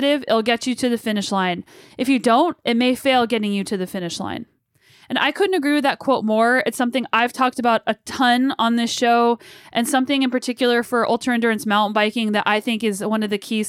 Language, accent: English, American